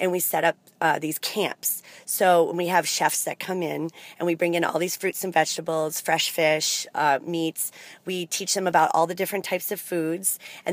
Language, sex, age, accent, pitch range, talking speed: English, female, 30-49, American, 165-190 Hz, 215 wpm